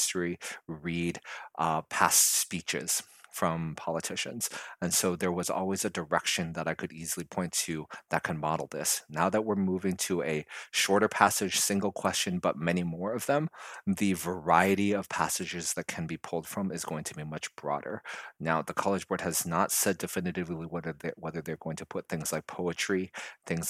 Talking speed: 180 wpm